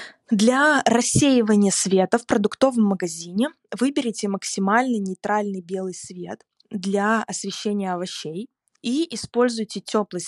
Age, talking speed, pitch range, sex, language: 20-39, 100 wpm, 195-235 Hz, female, Russian